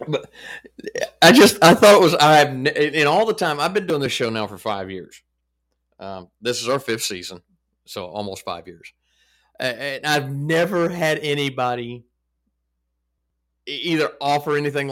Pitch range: 105-145 Hz